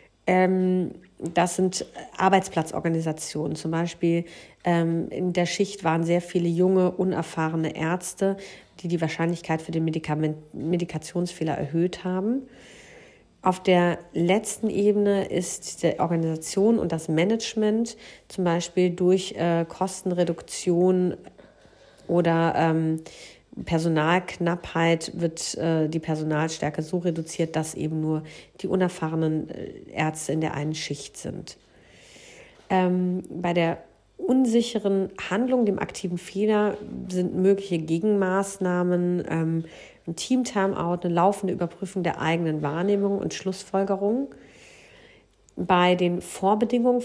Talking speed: 110 wpm